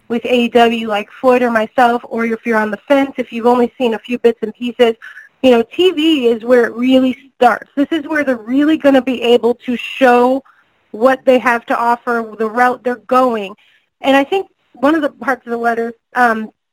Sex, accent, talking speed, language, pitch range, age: female, American, 215 wpm, English, 235-270 Hz, 30-49